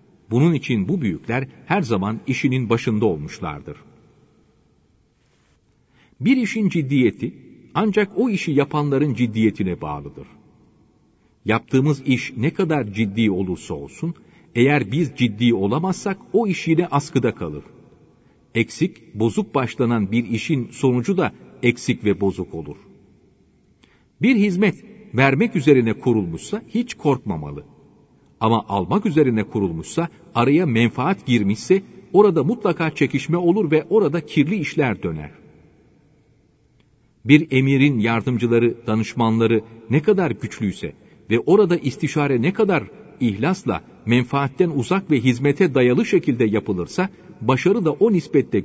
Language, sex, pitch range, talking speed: Turkish, male, 115-170 Hz, 115 wpm